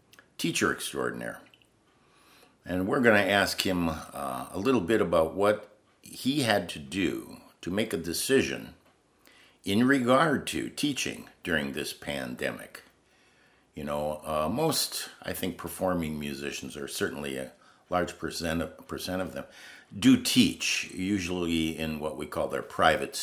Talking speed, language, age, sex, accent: 140 wpm, English, 60-79, male, American